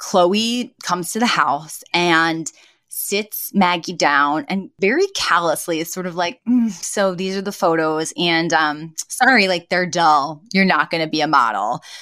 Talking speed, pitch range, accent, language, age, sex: 170 wpm, 175-230 Hz, American, English, 20-39, female